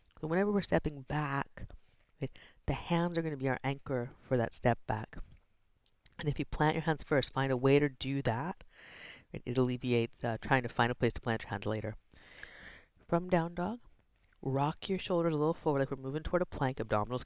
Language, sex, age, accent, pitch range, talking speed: English, female, 40-59, American, 120-165 Hz, 200 wpm